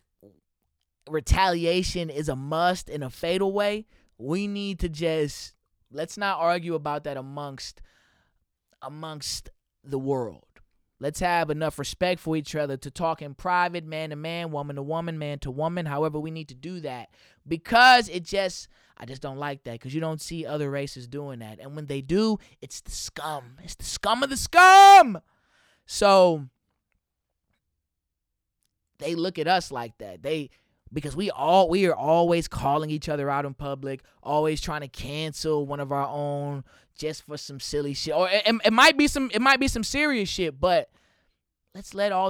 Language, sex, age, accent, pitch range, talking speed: English, male, 20-39, American, 140-180 Hz, 180 wpm